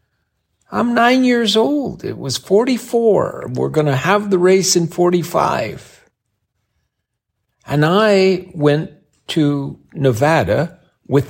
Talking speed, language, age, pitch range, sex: 110 wpm, English, 60-79, 115-165 Hz, male